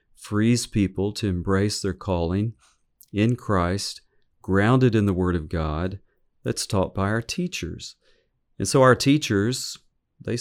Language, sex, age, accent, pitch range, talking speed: English, male, 40-59, American, 95-115 Hz, 140 wpm